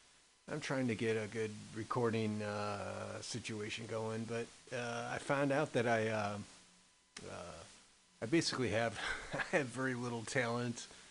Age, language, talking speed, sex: 30-49, English, 145 wpm, male